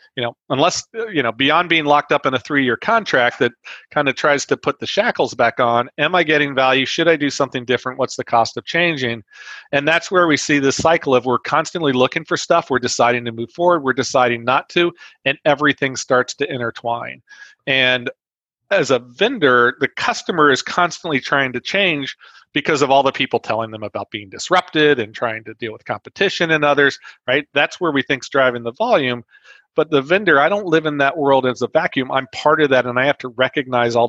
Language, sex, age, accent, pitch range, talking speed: English, male, 40-59, American, 120-150 Hz, 220 wpm